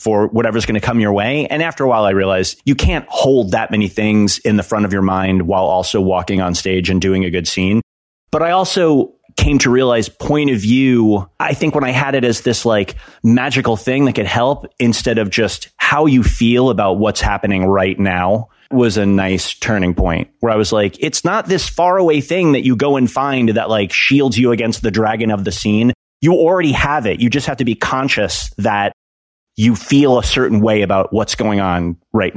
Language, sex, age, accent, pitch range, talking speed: English, male, 30-49, American, 100-130 Hz, 220 wpm